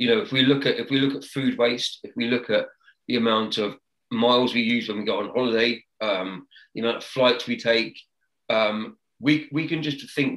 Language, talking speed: English, 230 wpm